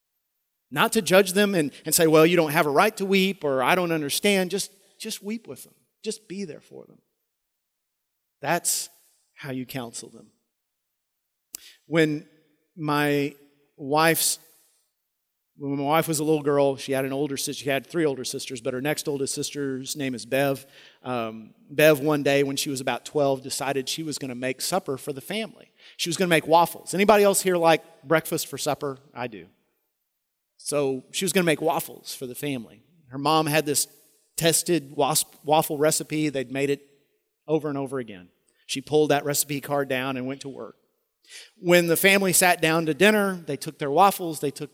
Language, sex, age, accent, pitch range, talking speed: English, male, 40-59, American, 140-180 Hz, 190 wpm